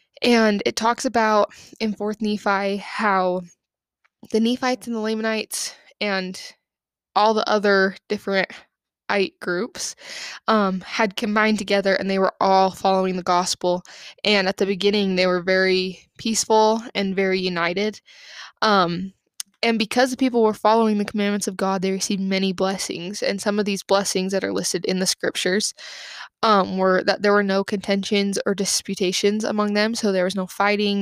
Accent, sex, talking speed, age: American, female, 160 wpm, 20-39